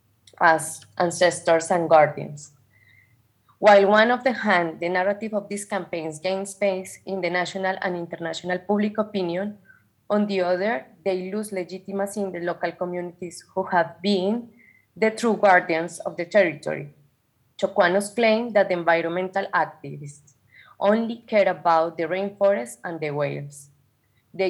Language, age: English, 20-39